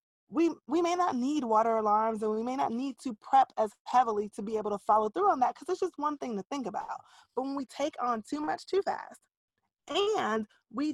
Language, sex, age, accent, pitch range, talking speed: English, female, 20-39, American, 210-295 Hz, 235 wpm